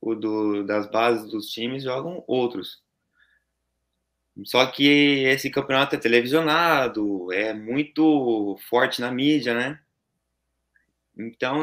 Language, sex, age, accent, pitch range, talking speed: Portuguese, male, 20-39, Brazilian, 110-145 Hz, 110 wpm